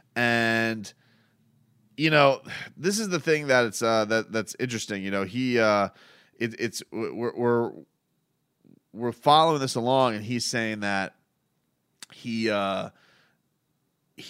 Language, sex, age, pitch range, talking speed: English, male, 30-49, 100-120 Hz, 130 wpm